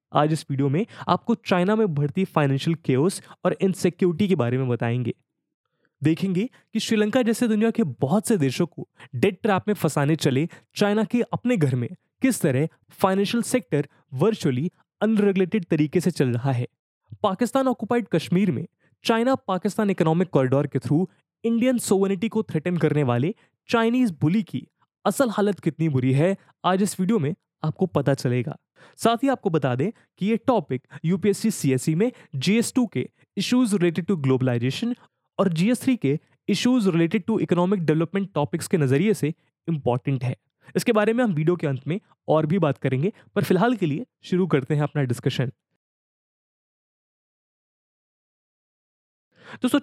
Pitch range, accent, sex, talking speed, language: 145-210 Hz, Indian, male, 125 wpm, English